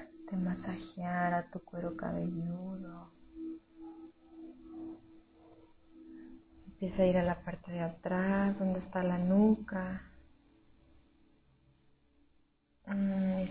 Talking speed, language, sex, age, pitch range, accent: 85 wpm, Spanish, female, 30-49, 115-190 Hz, Mexican